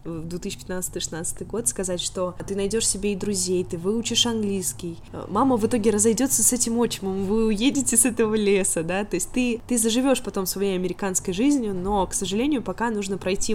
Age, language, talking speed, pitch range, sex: 20-39, Russian, 185 wpm, 185-230 Hz, female